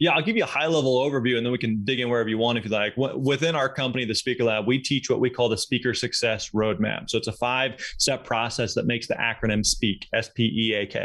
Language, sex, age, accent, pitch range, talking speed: English, male, 20-39, American, 120-145 Hz, 250 wpm